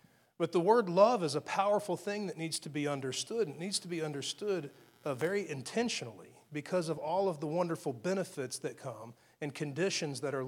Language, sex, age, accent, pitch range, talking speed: English, male, 40-59, American, 135-165 Hz, 200 wpm